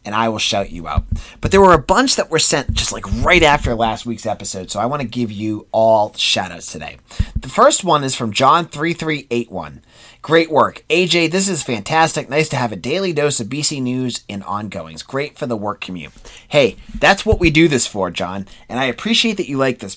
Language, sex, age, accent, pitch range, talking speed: English, male, 30-49, American, 115-165 Hz, 220 wpm